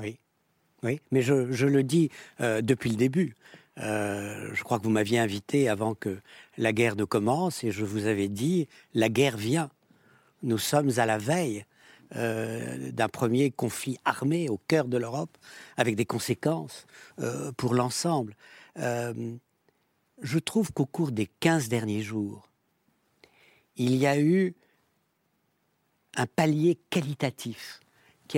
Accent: French